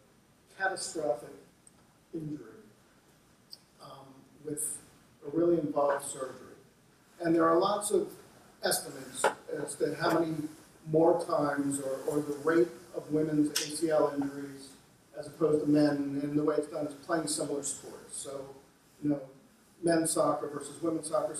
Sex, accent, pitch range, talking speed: male, American, 150-175 Hz, 135 wpm